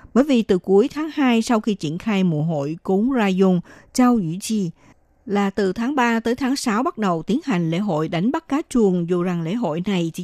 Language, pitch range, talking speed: Vietnamese, 180-240 Hz, 240 wpm